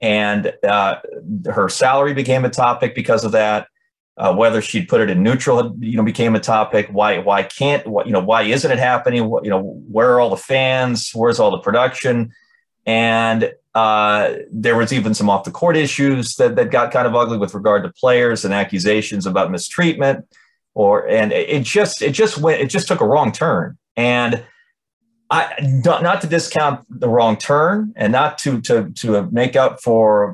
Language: English